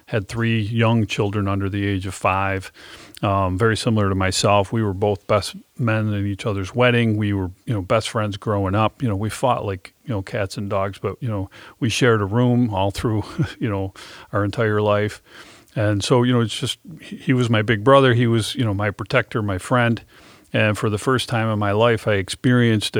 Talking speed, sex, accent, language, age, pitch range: 220 wpm, male, American, English, 40-59, 100-120 Hz